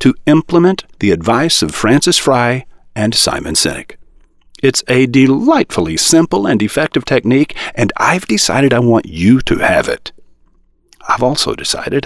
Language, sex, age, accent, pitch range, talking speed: English, male, 50-69, American, 105-165 Hz, 145 wpm